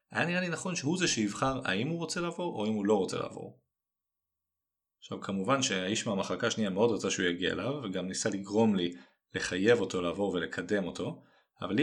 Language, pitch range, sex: Hebrew, 100-145 Hz, male